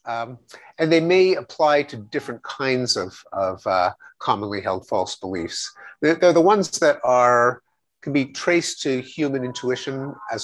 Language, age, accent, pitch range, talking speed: English, 50-69, American, 115-150 Hz, 160 wpm